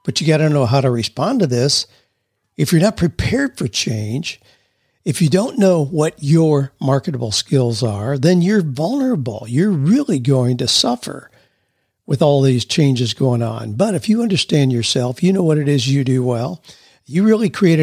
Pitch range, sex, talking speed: 125-180 Hz, male, 185 wpm